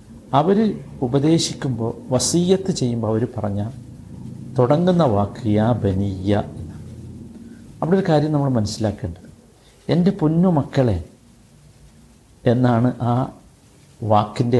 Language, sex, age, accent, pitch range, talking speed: Malayalam, male, 50-69, native, 105-140 Hz, 80 wpm